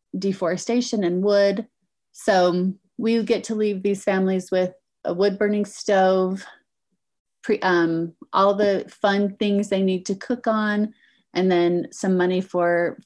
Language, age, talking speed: English, 30-49, 135 wpm